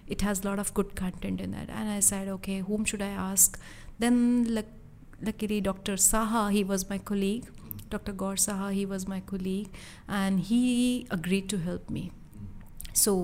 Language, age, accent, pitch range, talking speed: English, 30-49, Indian, 180-200 Hz, 175 wpm